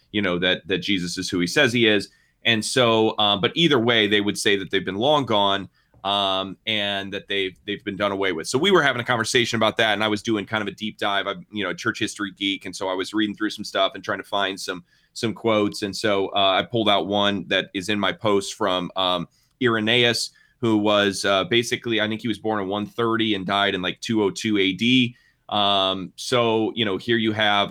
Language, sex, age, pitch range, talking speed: English, male, 30-49, 95-115 Hz, 245 wpm